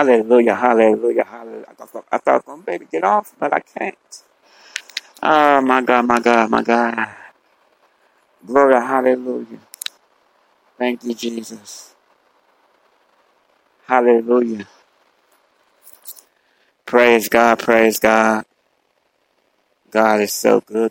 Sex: male